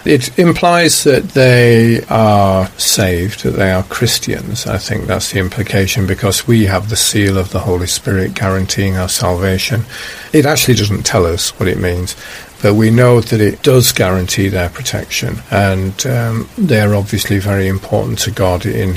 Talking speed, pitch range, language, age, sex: 170 wpm, 95-120 Hz, English, 50-69, male